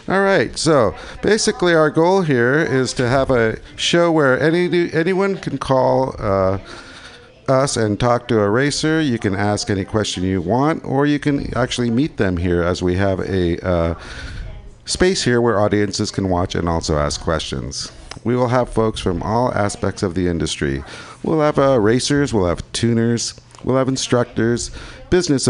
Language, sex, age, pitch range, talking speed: English, male, 50-69, 95-145 Hz, 175 wpm